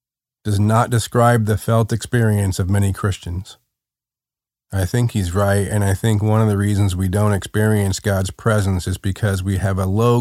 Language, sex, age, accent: English, male, 40-59, American